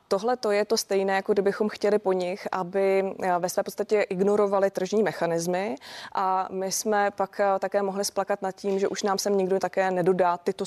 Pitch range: 175-200 Hz